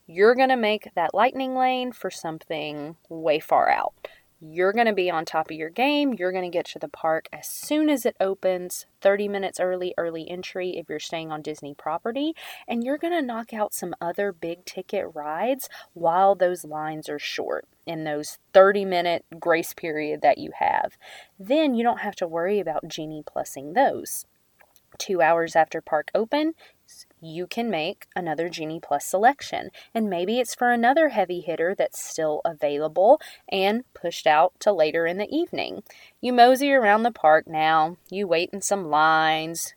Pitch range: 160-220 Hz